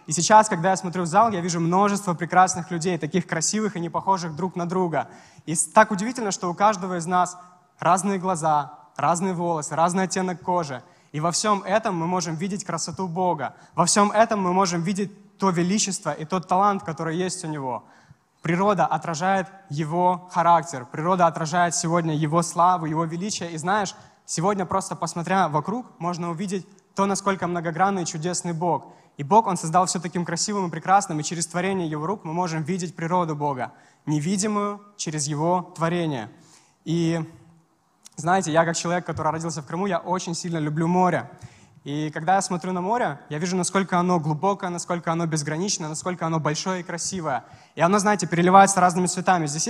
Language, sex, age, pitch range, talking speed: Russian, male, 20-39, 165-190 Hz, 175 wpm